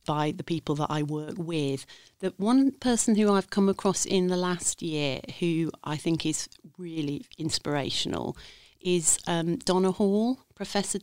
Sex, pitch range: female, 155-190 Hz